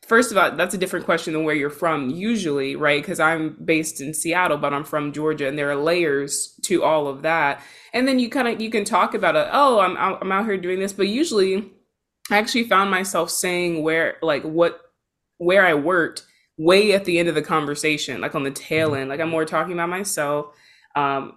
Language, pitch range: English, 155-200 Hz